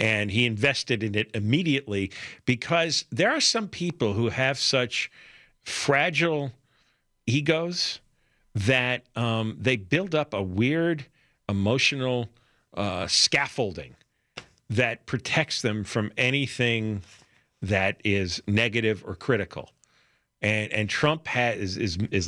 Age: 50-69